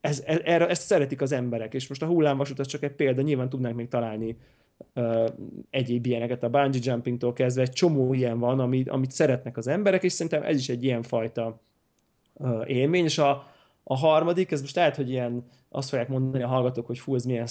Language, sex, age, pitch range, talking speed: Hungarian, male, 30-49, 125-150 Hz, 210 wpm